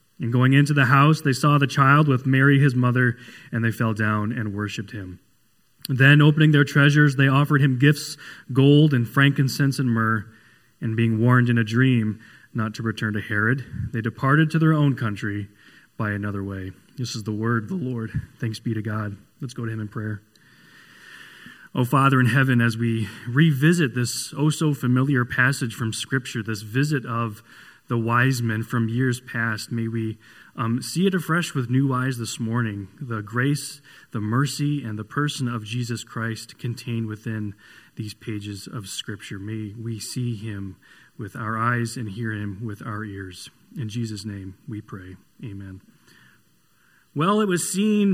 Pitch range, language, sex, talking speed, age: 110-135 Hz, English, male, 175 wpm, 30-49